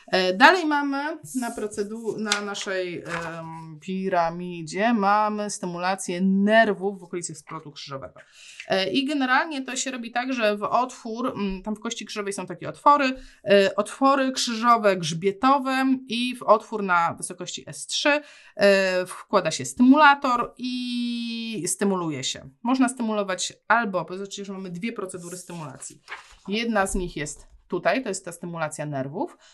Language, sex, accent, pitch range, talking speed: Polish, female, native, 170-235 Hz, 140 wpm